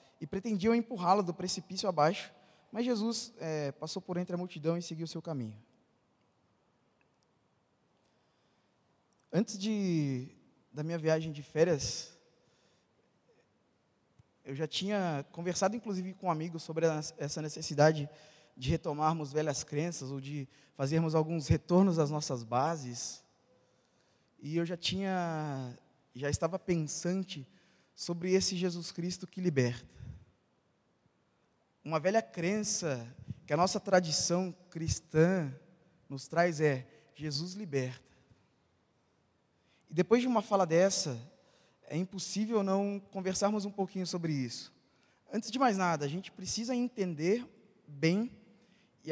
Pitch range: 155-195 Hz